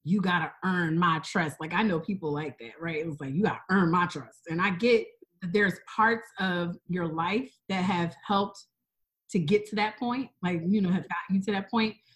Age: 30-49